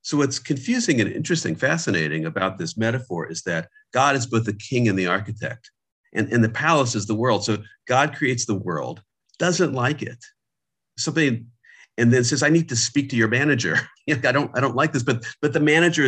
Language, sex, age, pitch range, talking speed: English, male, 50-69, 110-145 Hz, 200 wpm